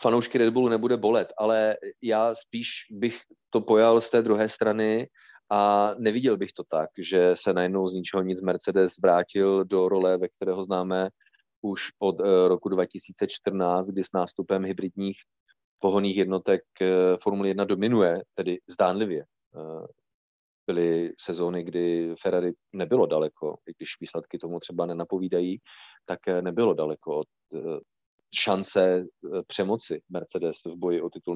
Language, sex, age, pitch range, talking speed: Czech, male, 30-49, 95-115 Hz, 140 wpm